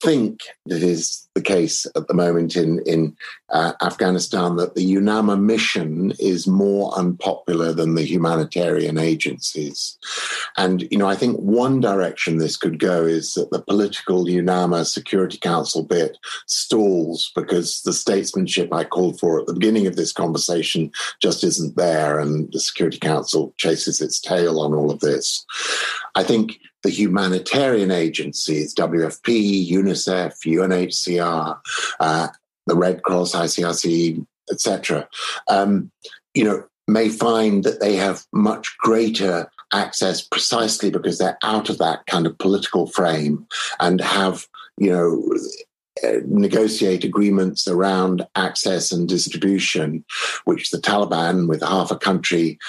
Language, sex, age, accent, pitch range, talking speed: English, male, 50-69, British, 85-100 Hz, 135 wpm